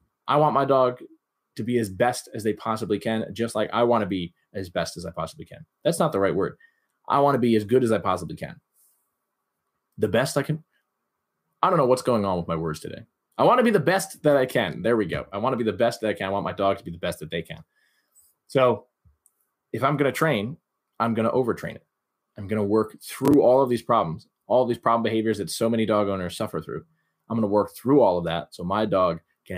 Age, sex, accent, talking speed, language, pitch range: 20-39, male, American, 260 wpm, English, 100-130 Hz